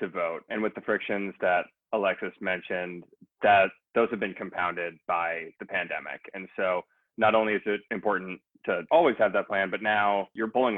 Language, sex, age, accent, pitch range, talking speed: English, male, 20-39, American, 90-100 Hz, 185 wpm